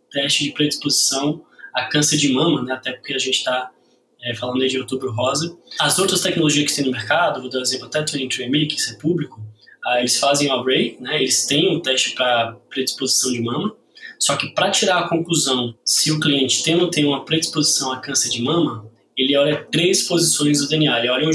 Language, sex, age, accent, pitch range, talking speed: Portuguese, male, 20-39, Brazilian, 130-155 Hz, 220 wpm